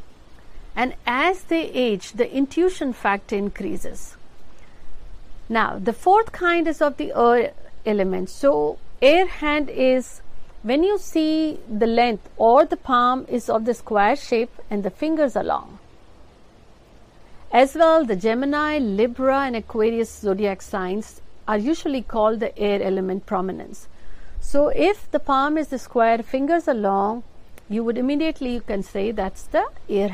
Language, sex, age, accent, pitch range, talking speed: Hindi, female, 50-69, native, 210-285 Hz, 145 wpm